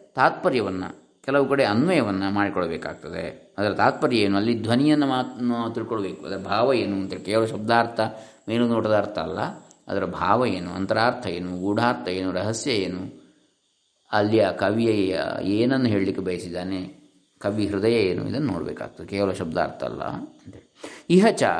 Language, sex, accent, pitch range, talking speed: Kannada, male, native, 100-130 Hz, 125 wpm